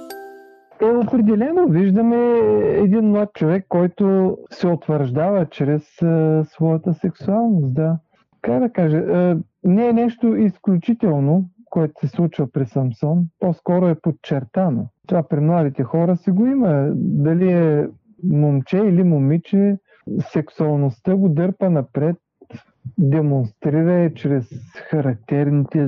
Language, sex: Bulgarian, male